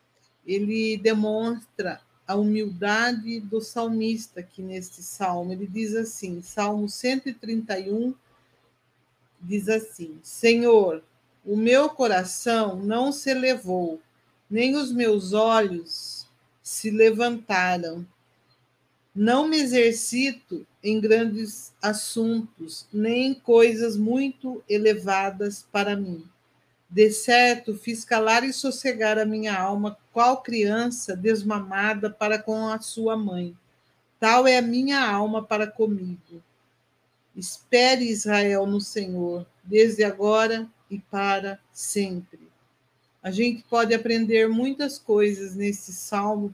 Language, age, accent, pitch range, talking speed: Portuguese, 50-69, Brazilian, 185-225 Hz, 105 wpm